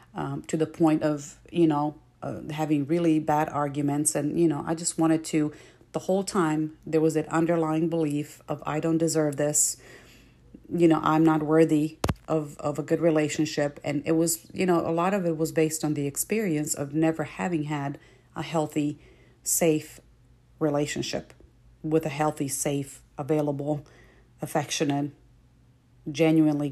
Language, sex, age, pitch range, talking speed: English, female, 40-59, 150-165 Hz, 160 wpm